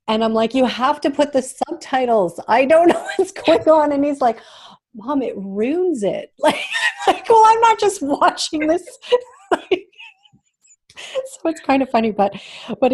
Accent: American